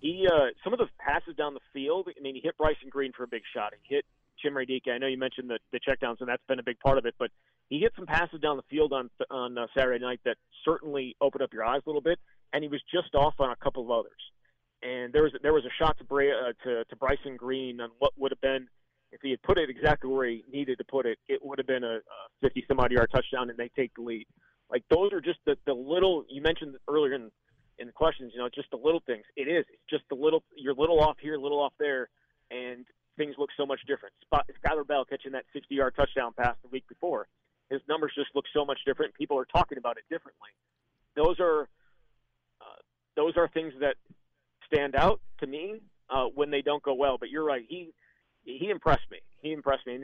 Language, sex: English, male